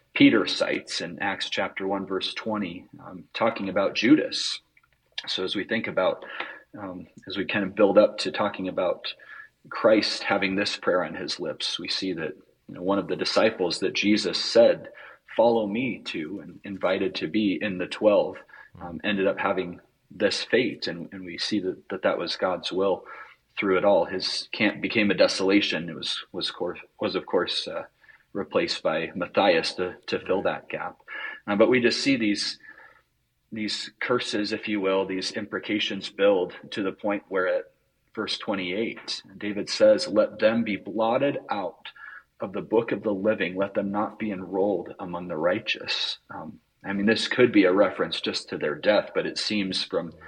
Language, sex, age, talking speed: English, male, 30-49, 180 wpm